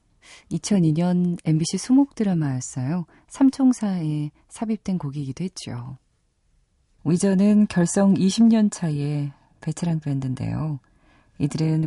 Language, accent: Korean, native